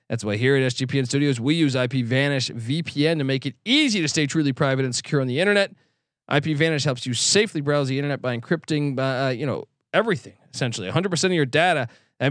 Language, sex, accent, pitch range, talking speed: English, male, American, 140-185 Hz, 220 wpm